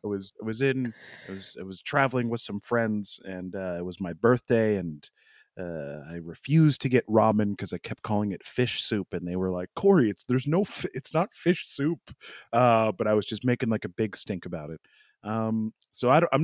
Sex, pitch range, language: male, 110-160 Hz, English